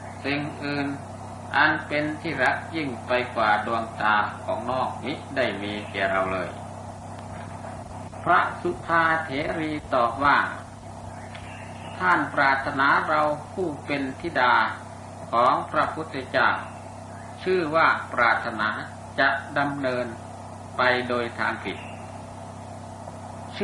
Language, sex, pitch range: Thai, male, 110-140 Hz